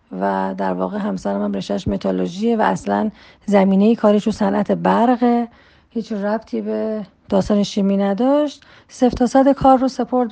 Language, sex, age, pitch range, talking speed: Persian, female, 40-59, 205-250 Hz, 145 wpm